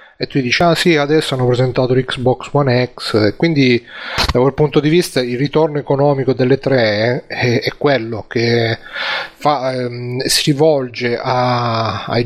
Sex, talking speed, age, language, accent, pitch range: male, 155 wpm, 30-49, Italian, native, 120-140 Hz